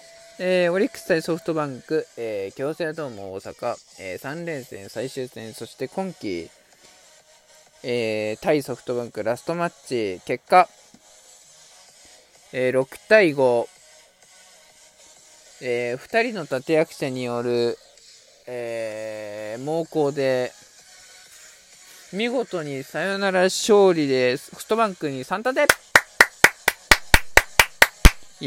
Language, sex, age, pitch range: Japanese, male, 20-39, 135-205 Hz